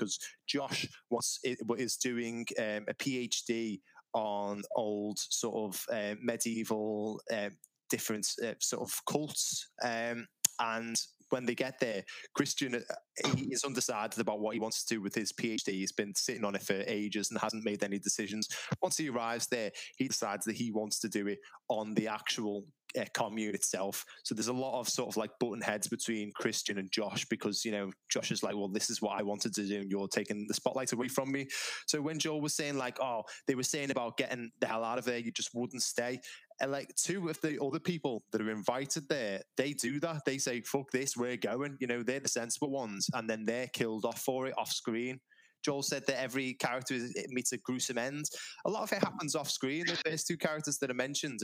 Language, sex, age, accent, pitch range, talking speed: English, male, 20-39, British, 110-135 Hz, 220 wpm